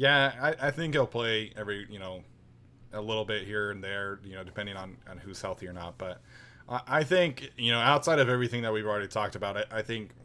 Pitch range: 105-120 Hz